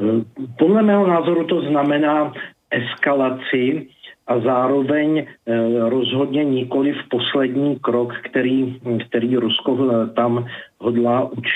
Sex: male